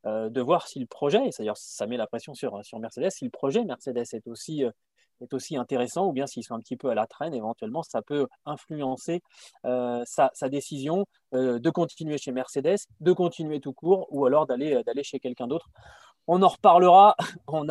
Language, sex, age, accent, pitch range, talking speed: French, male, 20-39, French, 135-195 Hz, 205 wpm